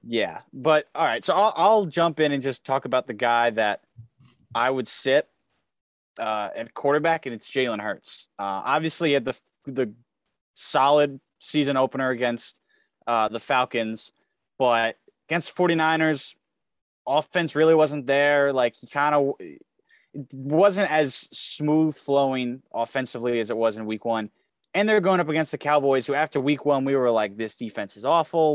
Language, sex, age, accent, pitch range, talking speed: English, male, 20-39, American, 120-150 Hz, 170 wpm